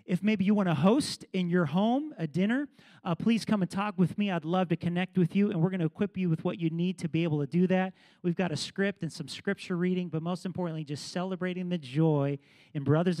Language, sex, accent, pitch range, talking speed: English, male, American, 155-185 Hz, 260 wpm